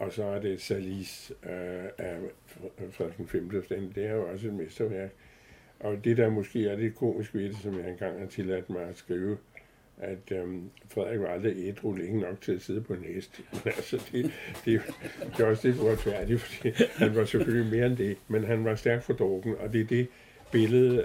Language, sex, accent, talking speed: Danish, male, American, 195 wpm